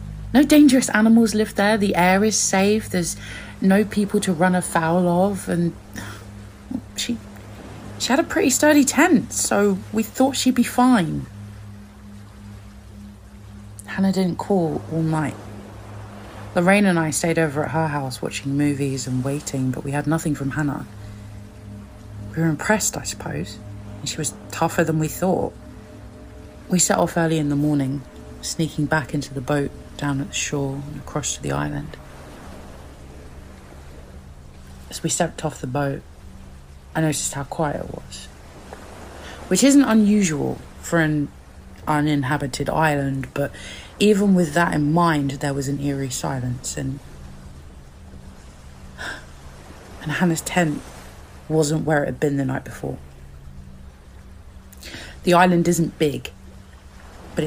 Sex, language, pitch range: female, English, 100-165 Hz